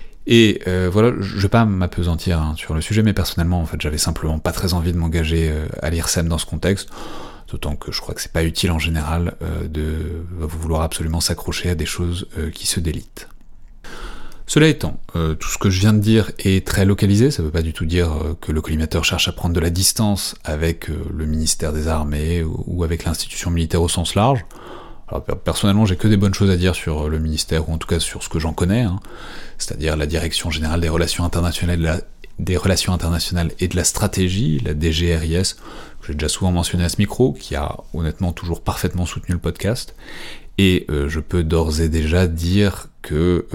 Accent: French